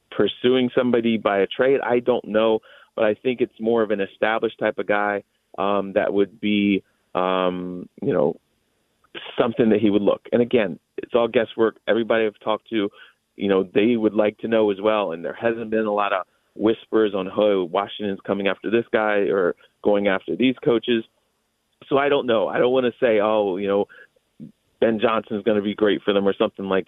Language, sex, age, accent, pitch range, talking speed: English, male, 30-49, American, 100-115 Hz, 205 wpm